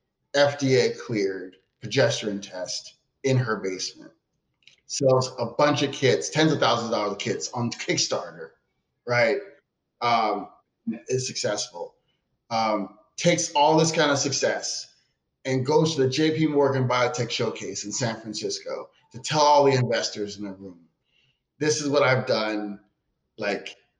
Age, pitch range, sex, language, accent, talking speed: 30-49, 115-155 Hz, male, English, American, 140 wpm